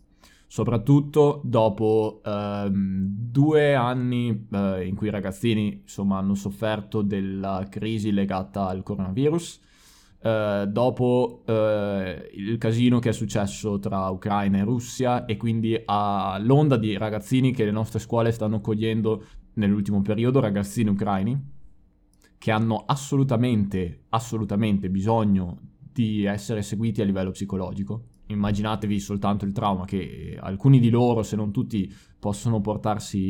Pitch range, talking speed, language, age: 100-120 Hz, 125 wpm, Italian, 20-39